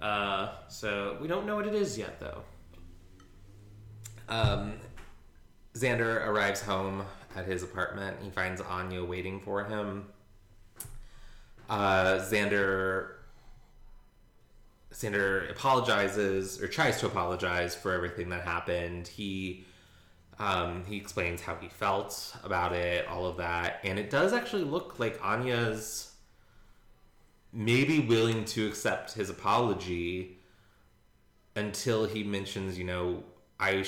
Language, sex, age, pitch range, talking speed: English, male, 20-39, 90-105 Hz, 115 wpm